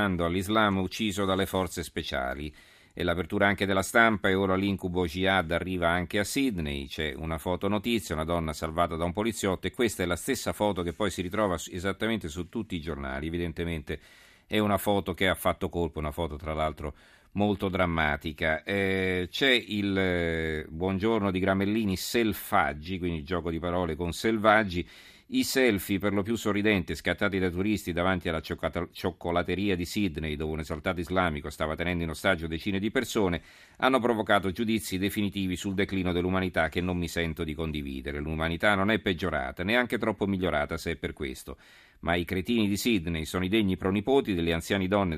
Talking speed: 175 wpm